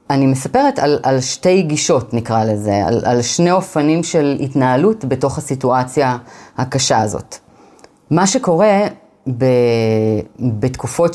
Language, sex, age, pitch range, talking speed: Hebrew, female, 30-49, 130-170 Hz, 120 wpm